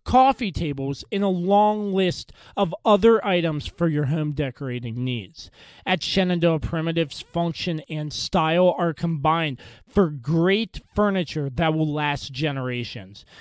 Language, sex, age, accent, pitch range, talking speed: English, male, 30-49, American, 150-195 Hz, 130 wpm